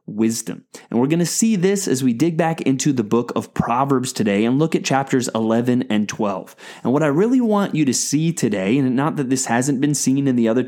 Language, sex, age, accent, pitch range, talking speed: English, male, 30-49, American, 115-150 Hz, 240 wpm